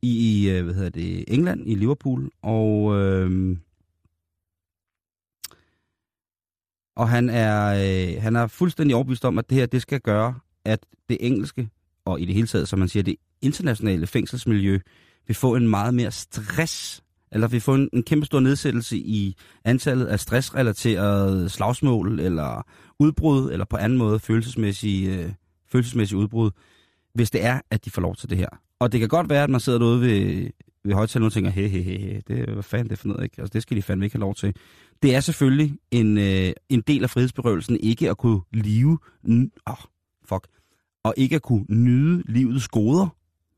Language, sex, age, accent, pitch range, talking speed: Danish, male, 30-49, native, 95-125 Hz, 180 wpm